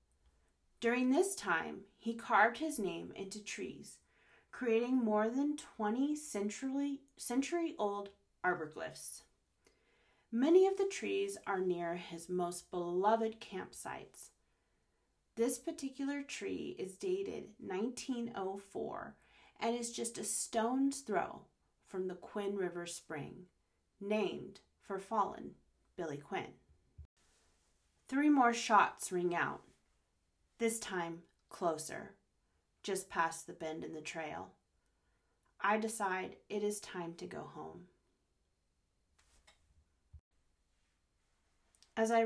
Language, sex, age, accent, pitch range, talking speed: English, female, 30-49, American, 160-225 Hz, 100 wpm